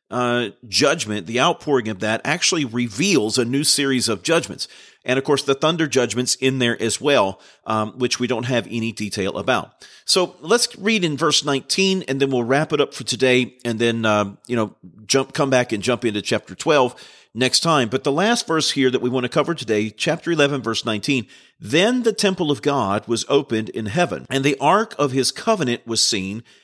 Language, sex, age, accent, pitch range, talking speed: English, male, 40-59, American, 120-155 Hz, 205 wpm